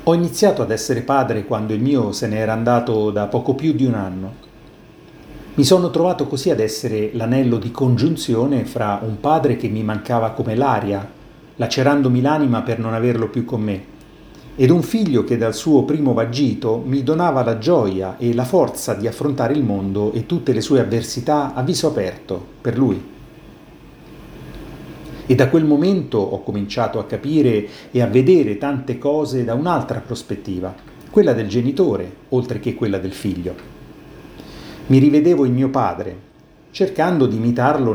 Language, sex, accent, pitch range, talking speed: Italian, male, native, 110-145 Hz, 165 wpm